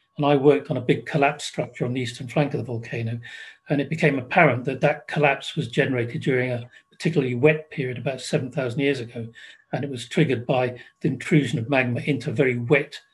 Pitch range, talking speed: 125-155 Hz, 205 wpm